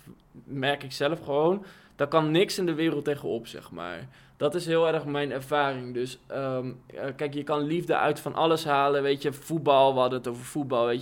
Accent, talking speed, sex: Dutch, 205 wpm, male